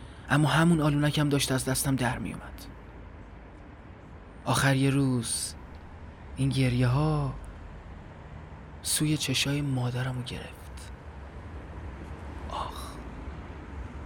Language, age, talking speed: Persian, 30-49, 80 wpm